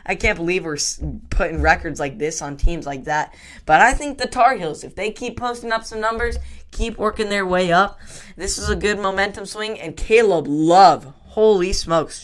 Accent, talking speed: American, 200 wpm